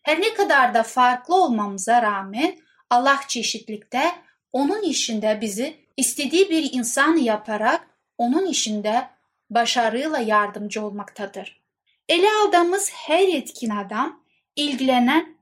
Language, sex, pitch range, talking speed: Turkish, female, 225-305 Hz, 105 wpm